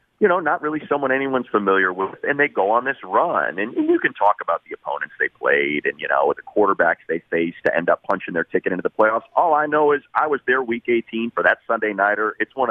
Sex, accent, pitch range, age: male, American, 105-145 Hz, 40-59